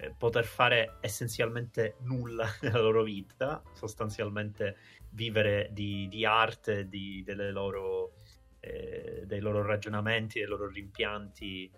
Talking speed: 95 wpm